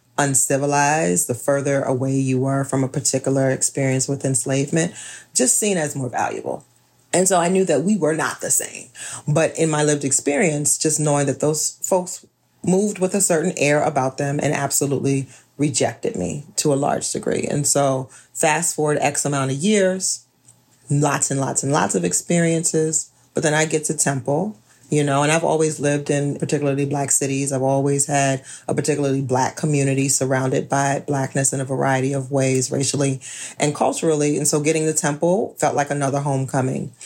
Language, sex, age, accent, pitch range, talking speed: English, female, 30-49, American, 135-160 Hz, 180 wpm